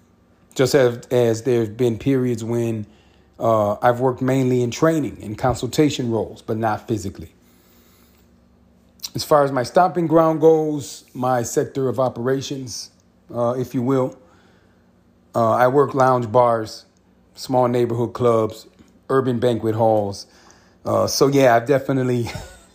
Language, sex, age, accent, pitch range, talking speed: English, male, 40-59, American, 110-140 Hz, 130 wpm